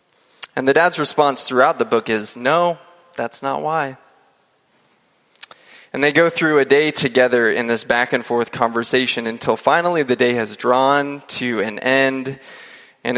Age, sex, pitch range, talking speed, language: 20-39, male, 120-145 Hz, 160 wpm, English